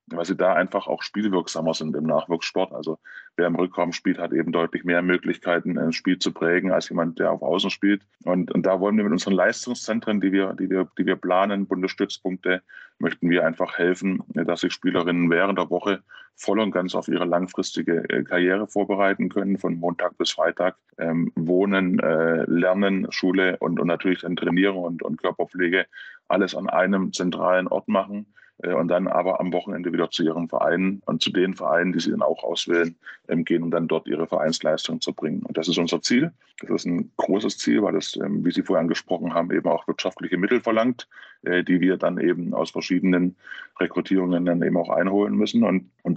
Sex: male